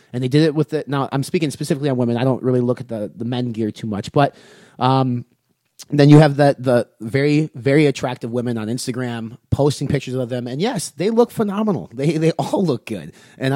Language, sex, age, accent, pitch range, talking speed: English, male, 30-49, American, 125-155 Hz, 225 wpm